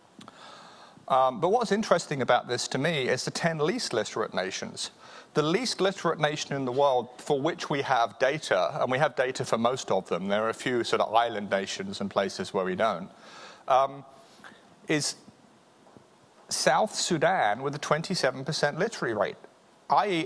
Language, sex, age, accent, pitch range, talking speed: English, male, 40-59, British, 120-165 Hz, 170 wpm